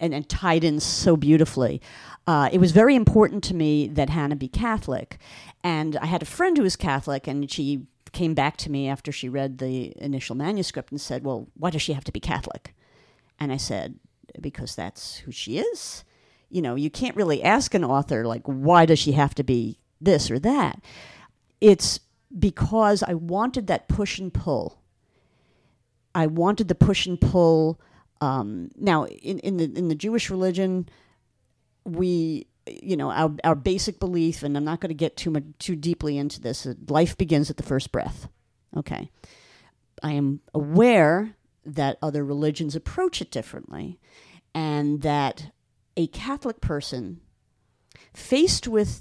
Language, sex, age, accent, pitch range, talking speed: English, female, 50-69, American, 140-180 Hz, 170 wpm